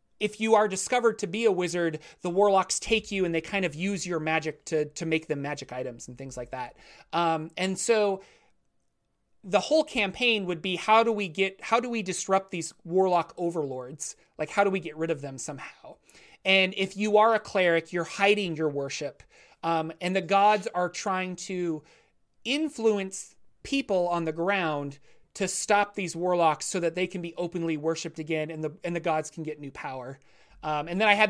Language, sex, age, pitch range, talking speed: English, male, 30-49, 155-195 Hz, 200 wpm